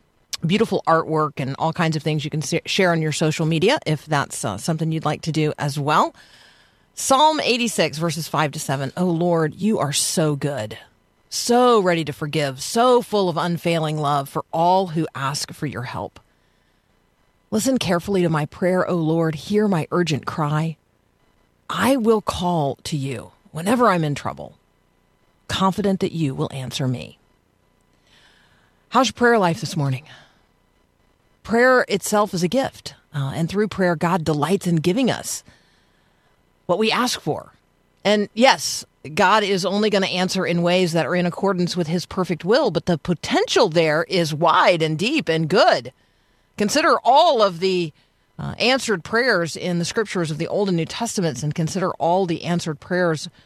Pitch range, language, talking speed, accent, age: 155-195 Hz, English, 170 wpm, American, 40-59